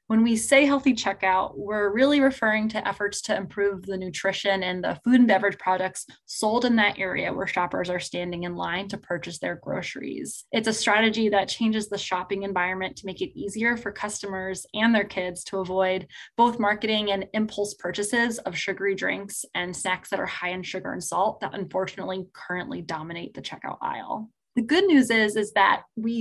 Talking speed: 190 wpm